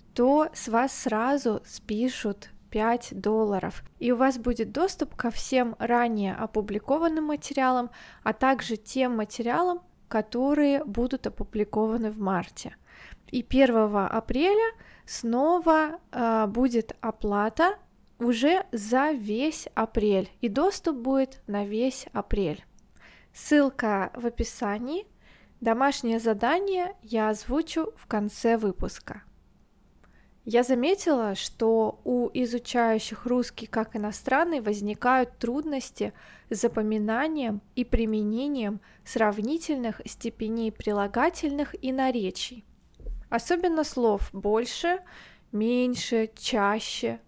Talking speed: 100 wpm